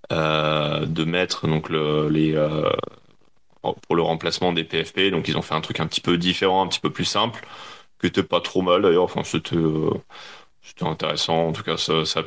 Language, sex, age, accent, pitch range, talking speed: French, male, 30-49, French, 80-95 Hz, 215 wpm